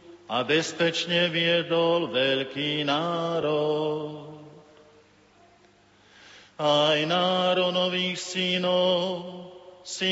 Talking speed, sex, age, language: 60 wpm, male, 50-69, Slovak